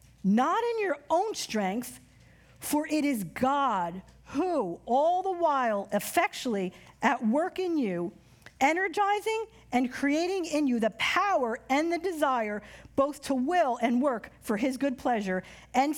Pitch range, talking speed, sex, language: 220-305 Hz, 145 wpm, female, English